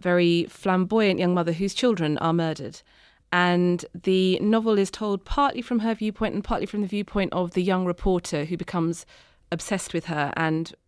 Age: 30-49